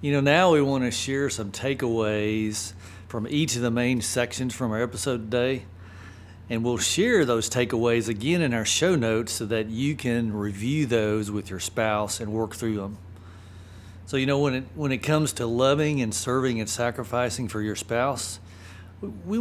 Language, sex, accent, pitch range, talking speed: English, male, American, 95-125 Hz, 180 wpm